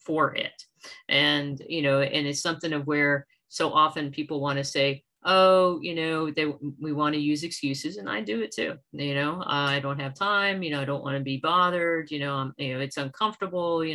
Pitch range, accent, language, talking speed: 145-180 Hz, American, English, 225 wpm